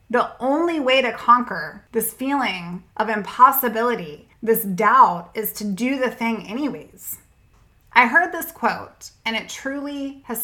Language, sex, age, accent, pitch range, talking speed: English, female, 20-39, American, 205-255 Hz, 145 wpm